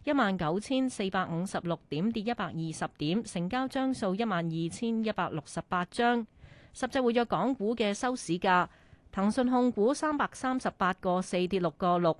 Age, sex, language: 30-49, female, Chinese